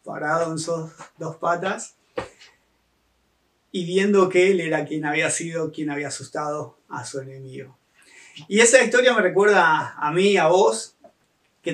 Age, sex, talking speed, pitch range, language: 30-49, male, 150 wpm, 150-195 Hz, Spanish